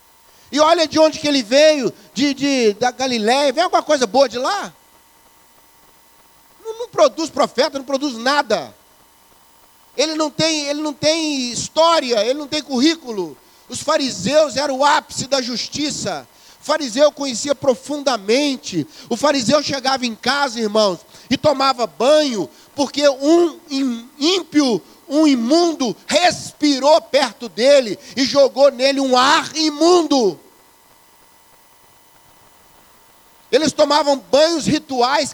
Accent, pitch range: Brazilian, 245-305 Hz